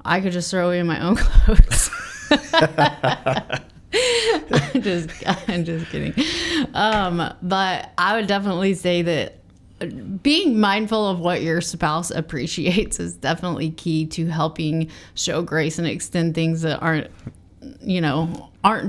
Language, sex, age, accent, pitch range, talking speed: English, female, 30-49, American, 165-195 Hz, 135 wpm